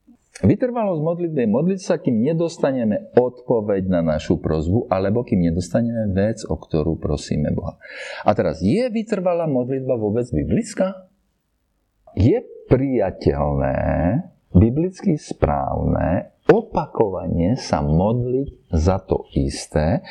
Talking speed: 105 wpm